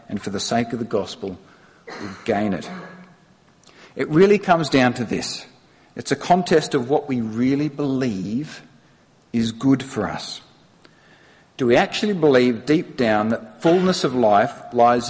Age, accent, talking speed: 50-69, Australian, 155 wpm